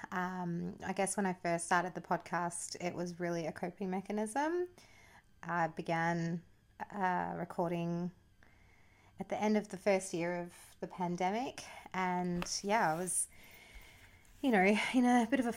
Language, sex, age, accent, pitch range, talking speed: English, female, 30-49, Australian, 175-210 Hz, 155 wpm